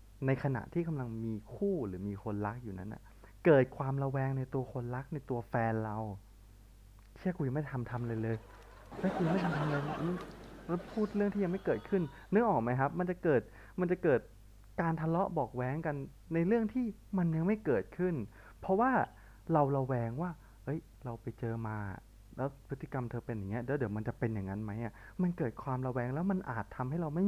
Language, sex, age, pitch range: Thai, male, 20-39, 105-150 Hz